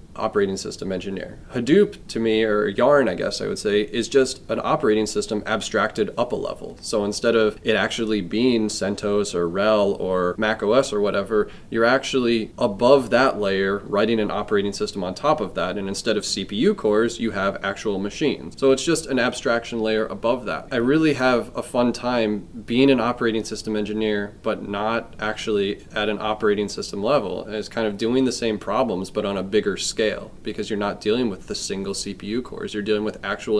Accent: American